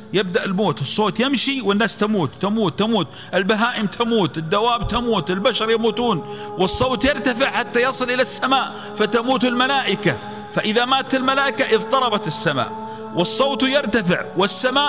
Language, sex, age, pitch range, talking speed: Arabic, male, 40-59, 210-270 Hz, 120 wpm